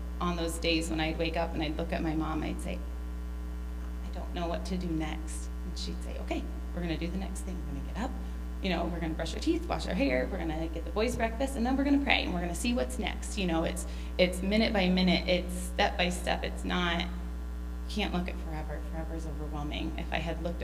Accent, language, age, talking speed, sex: American, English, 30-49, 255 wpm, female